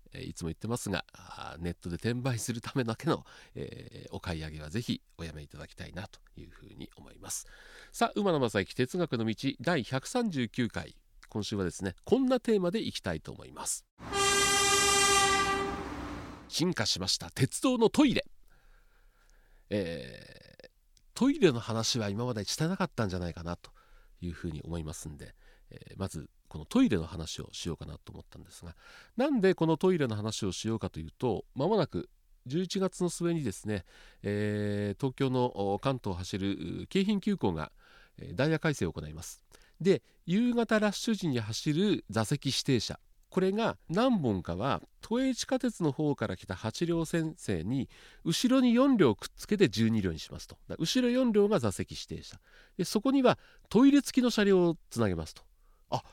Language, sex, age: Japanese, male, 40-59